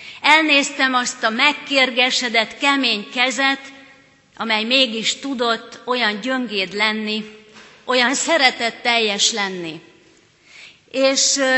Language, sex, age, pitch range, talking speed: Hungarian, female, 30-49, 205-265 Hz, 90 wpm